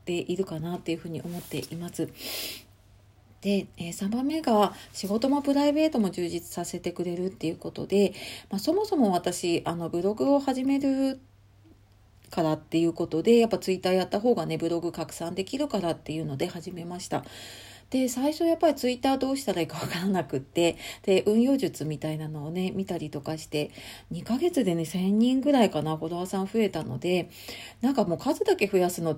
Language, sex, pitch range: Japanese, female, 160-230 Hz